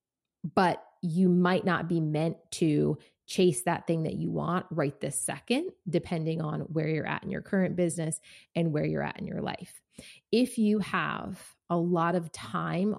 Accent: American